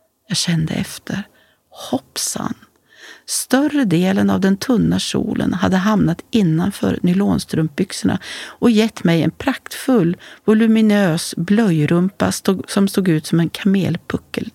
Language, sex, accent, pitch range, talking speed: Swedish, female, native, 165-210 Hz, 110 wpm